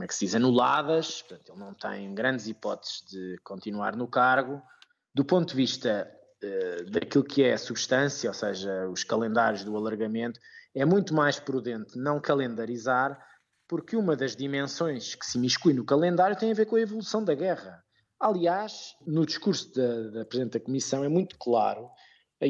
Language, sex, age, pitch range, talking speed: Portuguese, male, 20-39, 120-160 Hz, 175 wpm